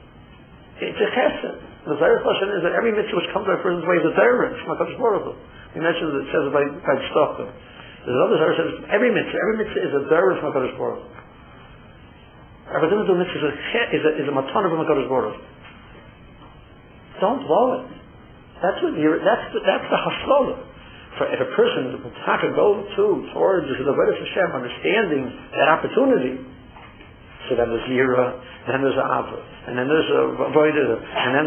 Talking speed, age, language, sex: 175 wpm, 60-79, English, male